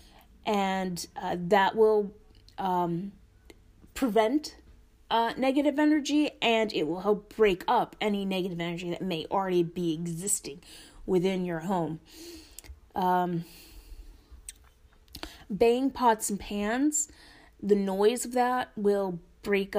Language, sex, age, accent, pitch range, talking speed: English, female, 20-39, American, 175-220 Hz, 110 wpm